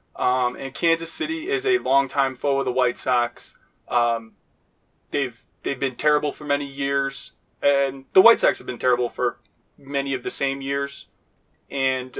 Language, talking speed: English, 165 wpm